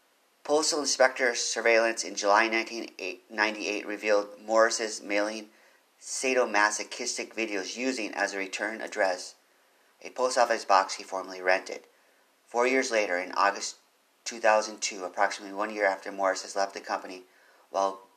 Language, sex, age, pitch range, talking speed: English, male, 40-59, 95-115 Hz, 130 wpm